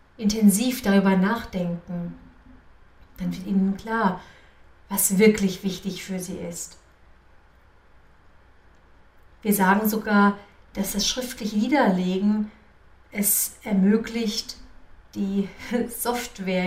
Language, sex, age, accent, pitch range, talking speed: German, female, 50-69, German, 175-210 Hz, 85 wpm